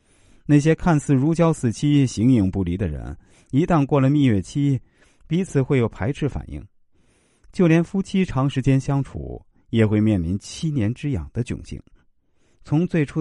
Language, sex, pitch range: Chinese, male, 90-140 Hz